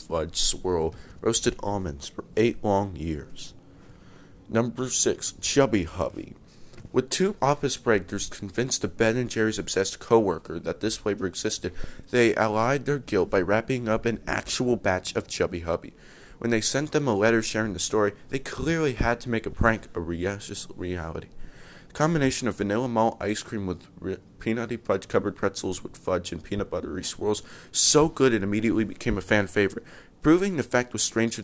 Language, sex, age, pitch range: English, male, 30-49, 95-120 Hz